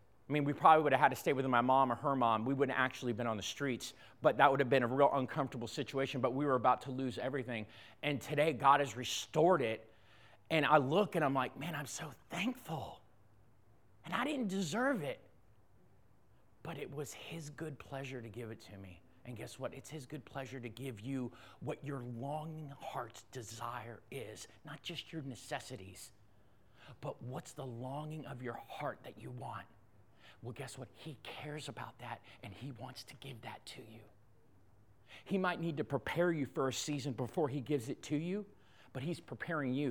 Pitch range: 110-145 Hz